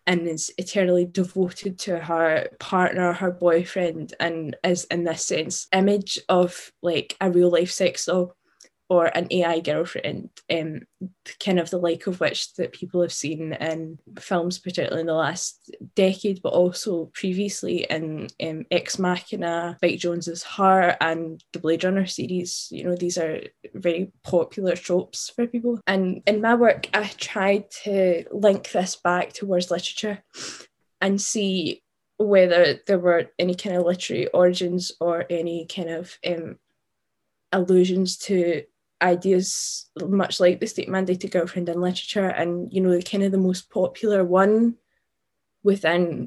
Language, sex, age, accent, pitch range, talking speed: English, female, 10-29, British, 170-190 Hz, 150 wpm